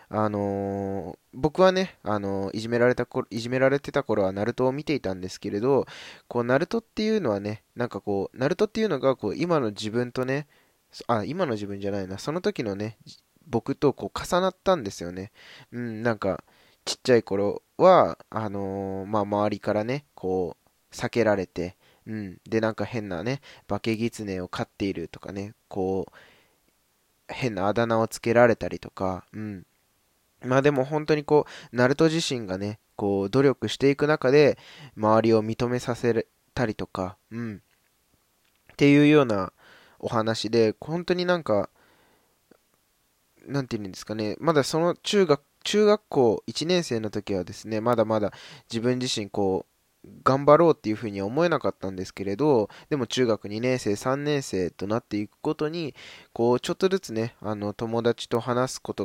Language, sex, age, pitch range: Japanese, male, 20-39, 105-135 Hz